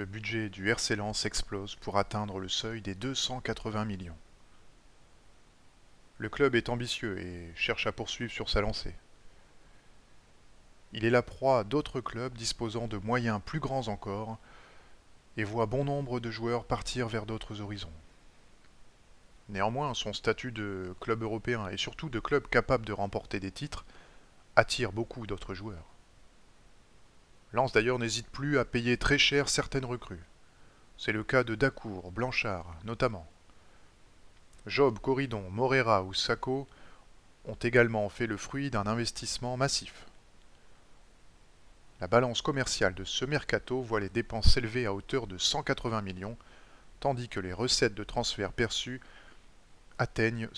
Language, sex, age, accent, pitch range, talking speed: French, male, 20-39, French, 100-125 Hz, 140 wpm